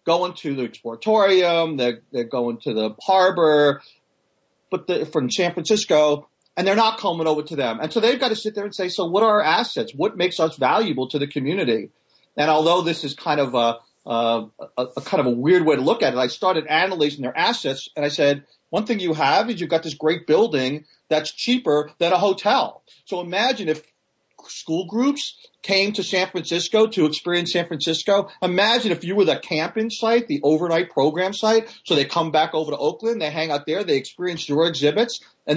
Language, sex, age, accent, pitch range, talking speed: English, male, 40-59, American, 135-185 Hz, 210 wpm